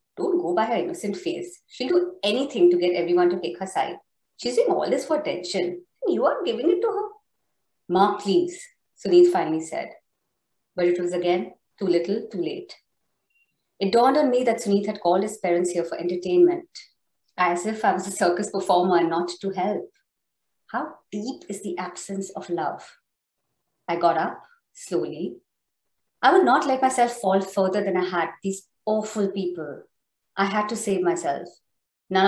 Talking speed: 175 wpm